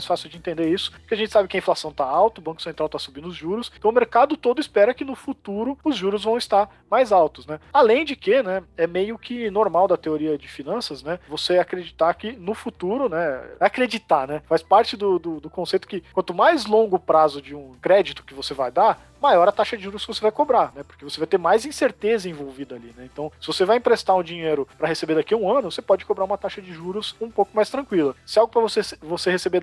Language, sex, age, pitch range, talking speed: Portuguese, male, 40-59, 160-230 Hz, 250 wpm